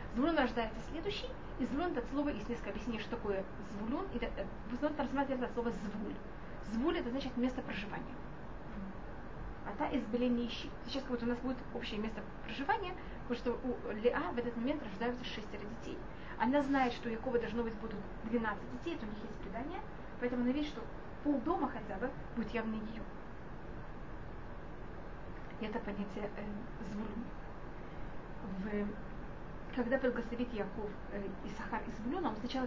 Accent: native